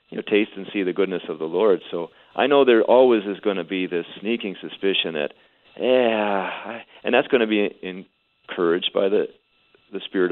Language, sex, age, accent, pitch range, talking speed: English, male, 40-59, American, 90-110 Hz, 200 wpm